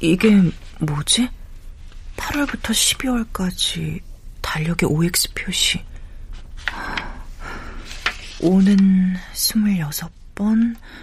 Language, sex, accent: Korean, female, native